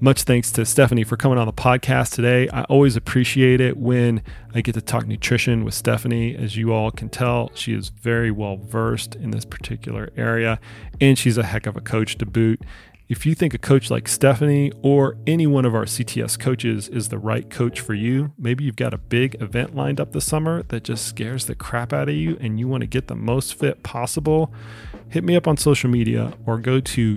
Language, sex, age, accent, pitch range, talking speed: English, male, 30-49, American, 110-130 Hz, 220 wpm